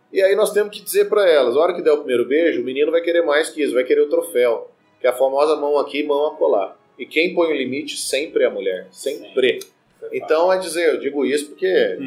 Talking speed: 260 wpm